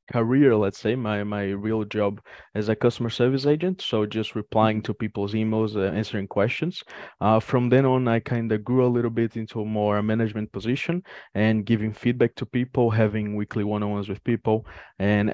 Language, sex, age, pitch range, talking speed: English, male, 20-39, 105-115 Hz, 195 wpm